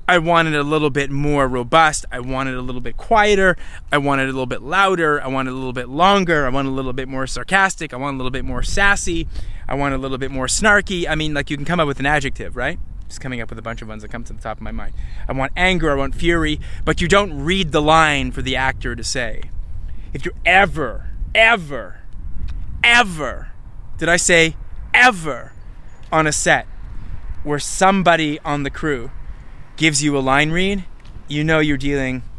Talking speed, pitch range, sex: 220 wpm, 120-160 Hz, male